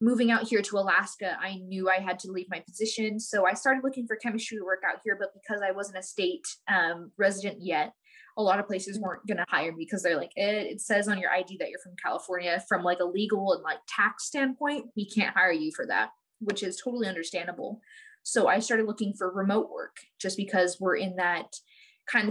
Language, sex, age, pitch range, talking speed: English, female, 20-39, 185-230 Hz, 225 wpm